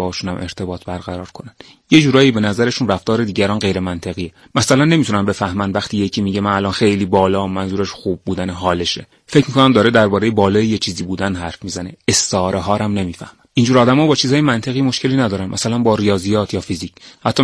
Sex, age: male, 30-49